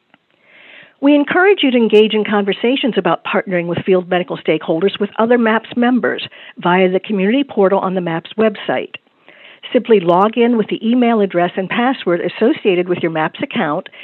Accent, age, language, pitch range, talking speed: American, 50-69, English, 185-245 Hz, 165 wpm